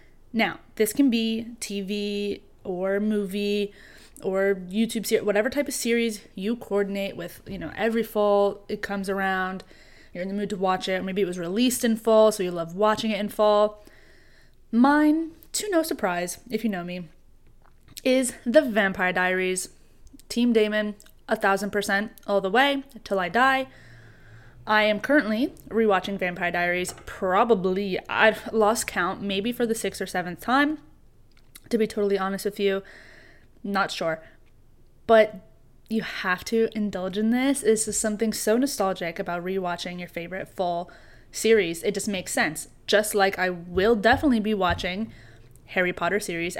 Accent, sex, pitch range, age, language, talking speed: American, female, 185-225 Hz, 20-39, English, 160 wpm